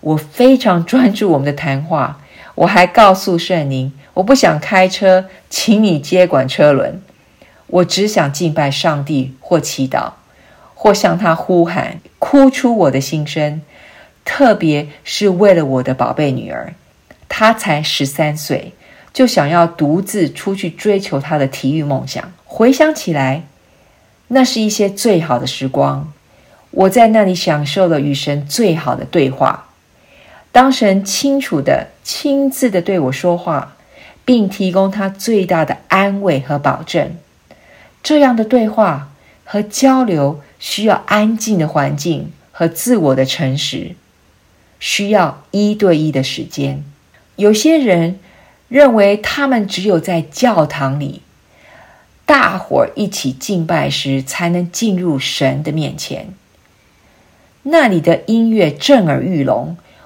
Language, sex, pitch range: English, female, 145-210 Hz